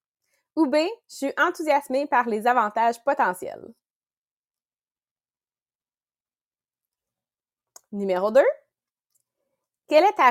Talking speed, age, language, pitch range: 80 wpm, 20-39, English, 230-295 Hz